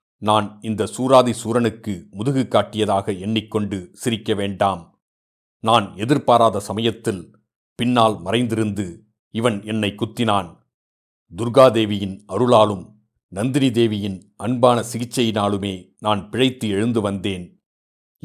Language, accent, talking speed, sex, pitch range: Tamil, native, 90 wpm, male, 105-125 Hz